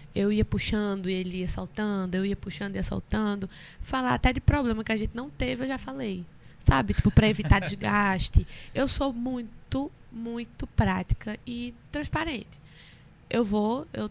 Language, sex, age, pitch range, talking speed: Portuguese, female, 10-29, 170-230 Hz, 170 wpm